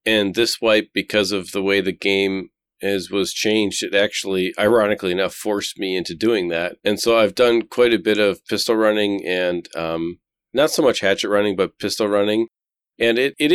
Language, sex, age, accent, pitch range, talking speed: English, male, 40-59, American, 100-125 Hz, 195 wpm